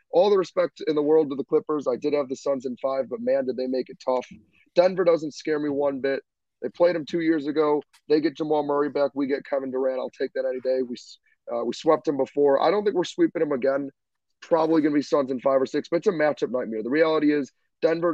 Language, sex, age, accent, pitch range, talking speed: English, male, 30-49, American, 130-155 Hz, 265 wpm